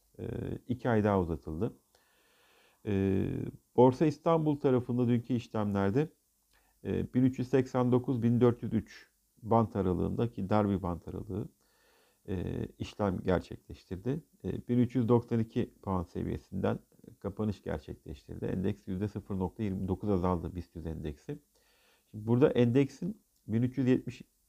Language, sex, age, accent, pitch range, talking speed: Turkish, male, 50-69, native, 95-125 Hz, 85 wpm